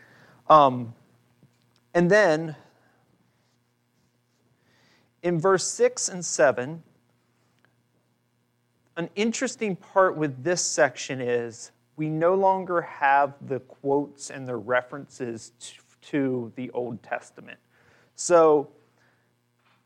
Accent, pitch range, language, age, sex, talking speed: American, 120-165 Hz, English, 40-59, male, 90 wpm